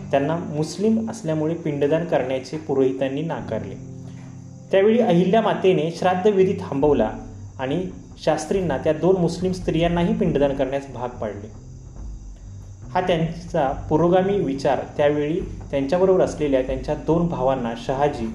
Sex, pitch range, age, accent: male, 130-175 Hz, 30-49, native